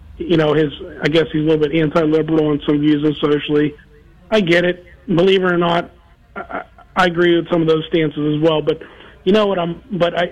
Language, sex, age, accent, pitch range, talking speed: English, male, 40-59, American, 150-175 Hz, 220 wpm